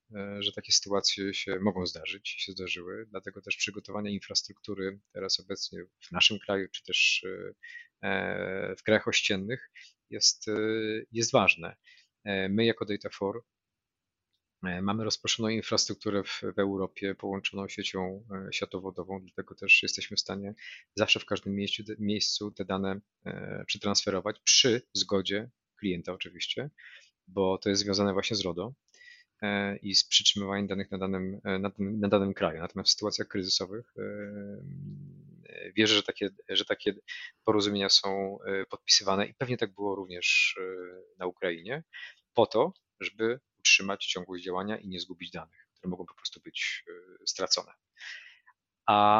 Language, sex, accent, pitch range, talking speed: Polish, male, native, 95-110 Hz, 125 wpm